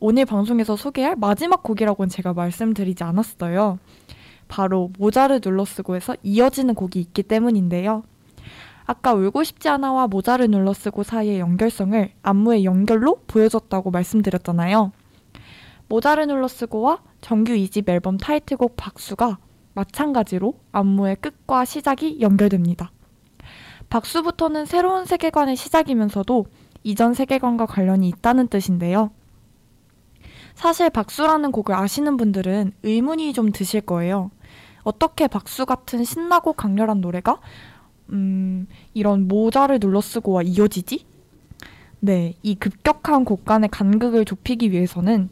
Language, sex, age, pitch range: Korean, female, 20-39, 195-250 Hz